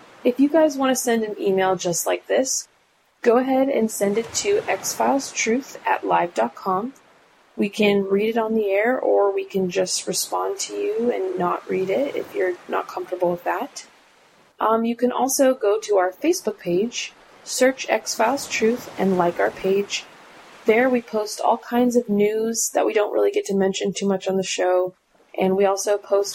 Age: 20-39